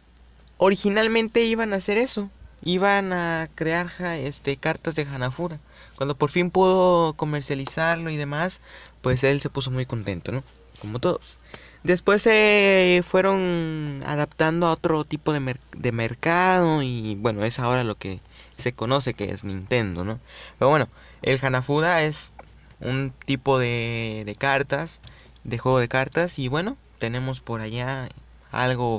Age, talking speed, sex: 20-39, 150 wpm, male